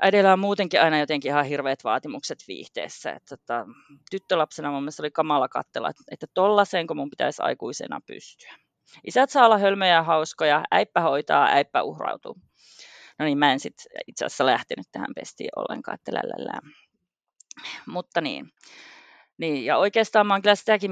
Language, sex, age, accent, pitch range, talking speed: Finnish, female, 30-49, native, 145-205 Hz, 155 wpm